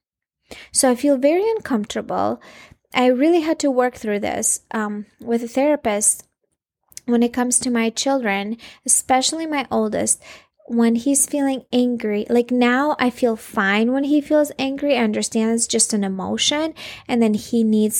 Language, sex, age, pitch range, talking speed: English, female, 20-39, 220-260 Hz, 160 wpm